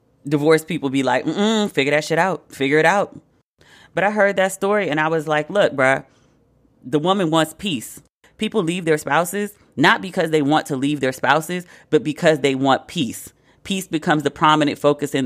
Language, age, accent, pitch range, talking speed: English, 30-49, American, 135-165 Hz, 195 wpm